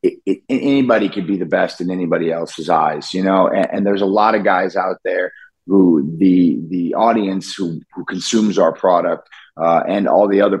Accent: American